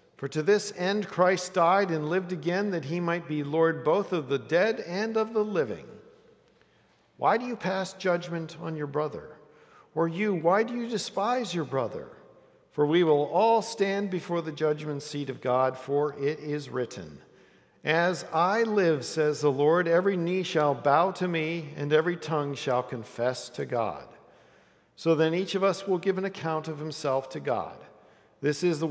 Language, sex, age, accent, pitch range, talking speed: English, male, 50-69, American, 140-185 Hz, 185 wpm